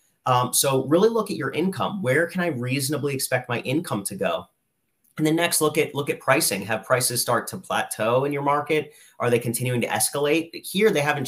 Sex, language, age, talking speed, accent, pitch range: male, English, 30-49, 215 wpm, American, 115-145 Hz